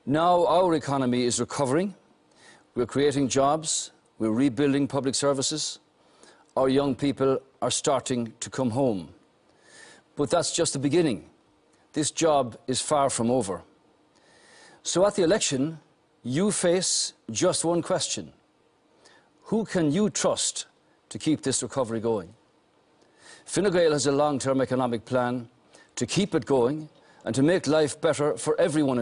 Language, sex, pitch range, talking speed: English, male, 135-160 Hz, 140 wpm